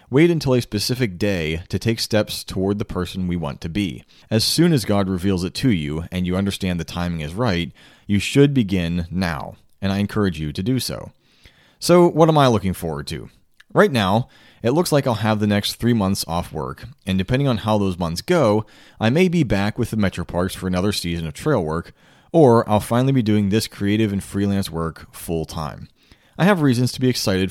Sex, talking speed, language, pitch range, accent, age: male, 215 wpm, English, 90-125 Hz, American, 30-49